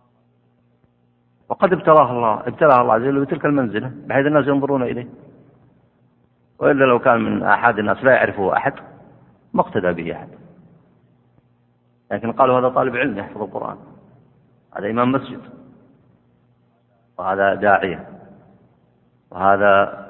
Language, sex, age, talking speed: Arabic, male, 50-69, 115 wpm